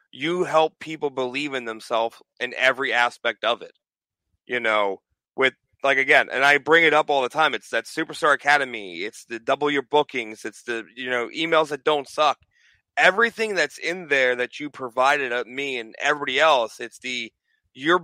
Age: 30-49